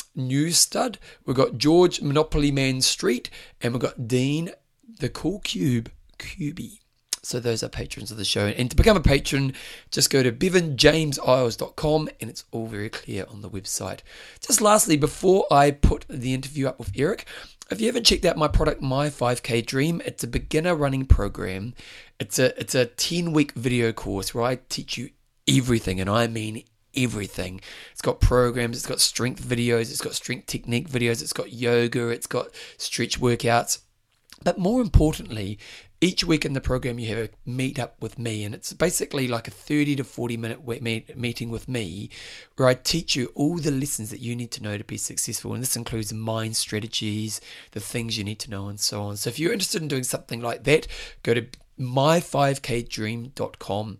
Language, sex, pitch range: English, male, 115-145 Hz